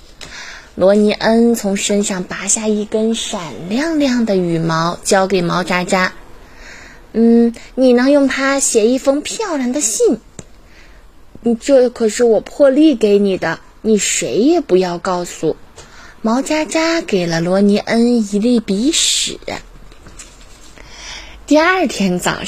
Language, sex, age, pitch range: Chinese, female, 20-39, 195-285 Hz